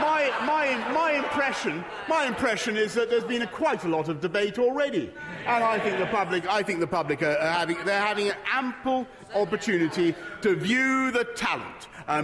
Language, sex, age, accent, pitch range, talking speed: English, male, 40-59, British, 200-260 Hz, 190 wpm